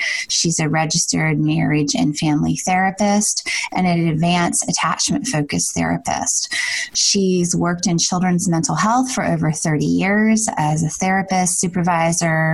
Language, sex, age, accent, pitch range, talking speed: English, female, 20-39, American, 160-210 Hz, 130 wpm